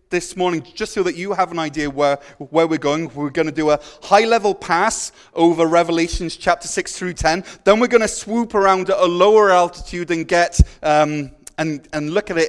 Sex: male